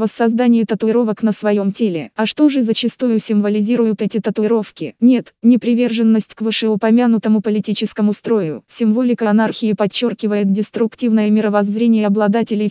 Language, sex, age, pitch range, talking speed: Russian, female, 20-39, 210-230 Hz, 115 wpm